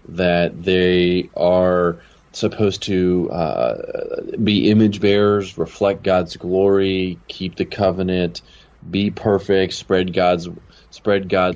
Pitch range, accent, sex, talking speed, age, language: 85-100 Hz, American, male, 110 wpm, 30-49, English